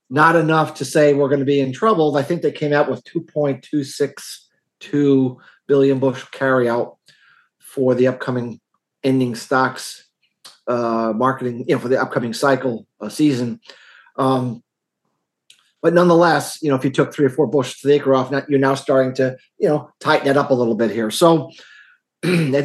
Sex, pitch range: male, 115-145 Hz